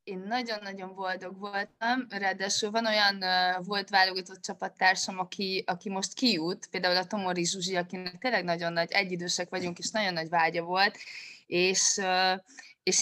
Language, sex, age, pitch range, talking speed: Hungarian, female, 20-39, 180-225 Hz, 145 wpm